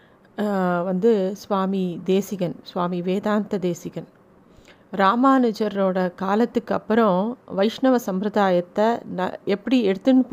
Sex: female